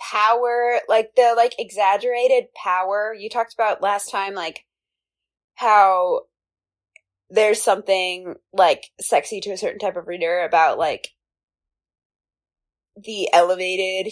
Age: 20-39